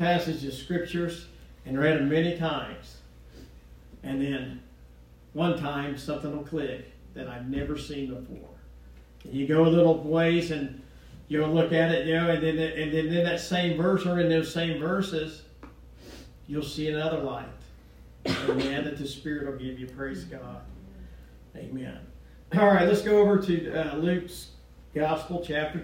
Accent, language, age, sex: American, English, 50-69, male